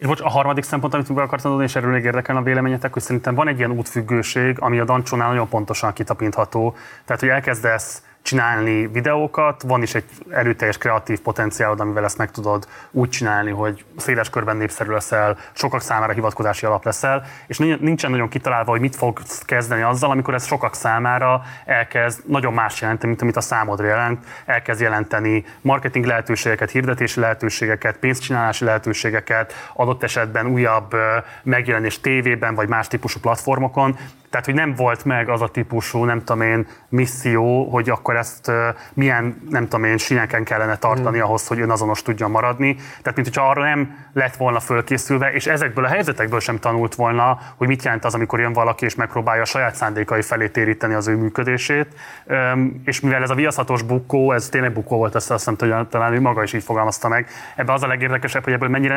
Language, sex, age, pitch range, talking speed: Hungarian, male, 20-39, 115-130 Hz, 180 wpm